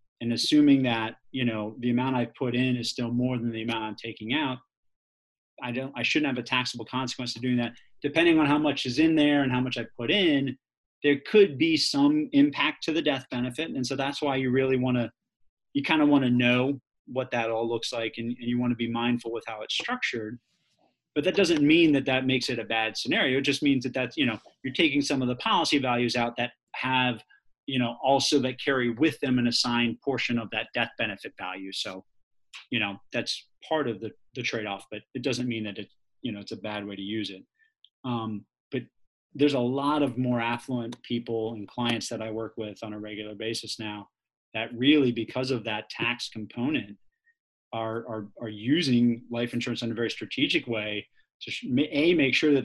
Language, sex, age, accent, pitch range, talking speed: English, male, 30-49, American, 115-135 Hz, 220 wpm